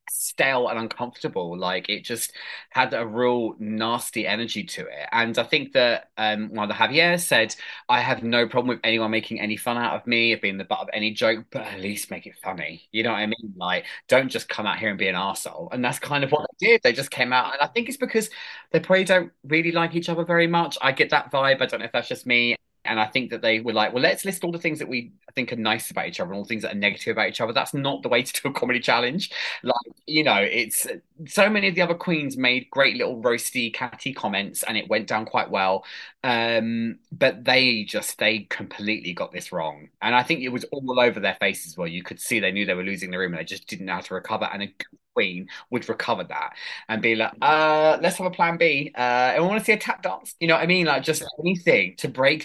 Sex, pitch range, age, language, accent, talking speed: male, 110-160 Hz, 20-39, English, British, 265 wpm